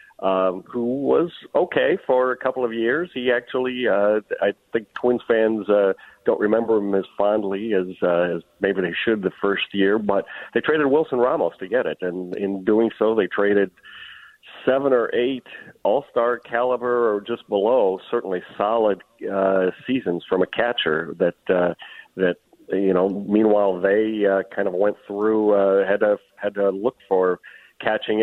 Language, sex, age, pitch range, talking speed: English, male, 50-69, 95-110 Hz, 170 wpm